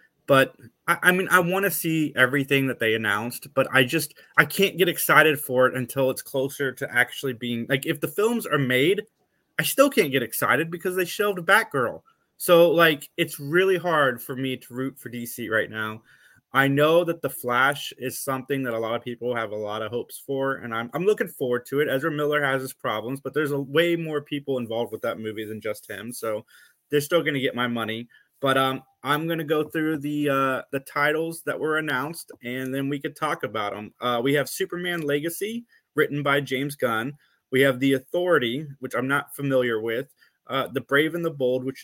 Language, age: English, 20-39